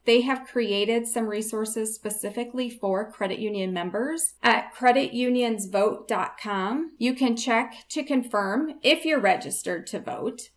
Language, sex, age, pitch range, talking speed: English, female, 30-49, 200-245 Hz, 125 wpm